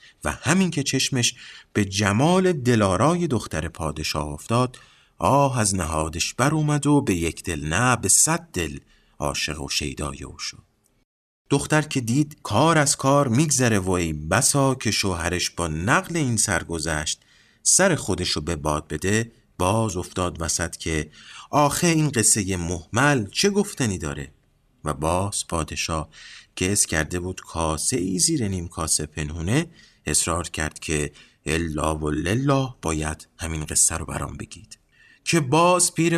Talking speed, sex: 145 wpm, male